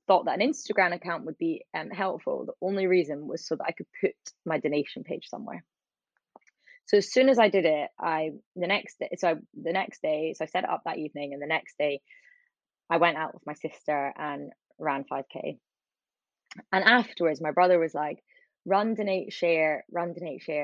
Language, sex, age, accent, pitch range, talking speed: English, female, 20-39, British, 150-200 Hz, 205 wpm